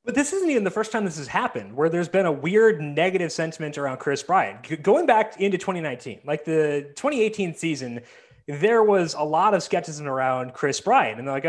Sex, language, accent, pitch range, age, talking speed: male, English, American, 150-205 Hz, 30-49, 210 wpm